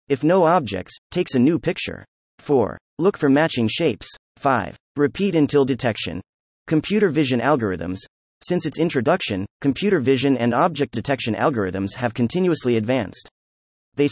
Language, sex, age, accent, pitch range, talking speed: English, male, 30-49, American, 110-165 Hz, 135 wpm